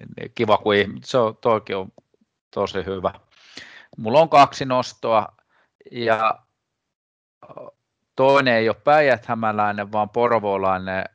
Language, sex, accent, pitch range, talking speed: Finnish, male, native, 95-115 Hz, 95 wpm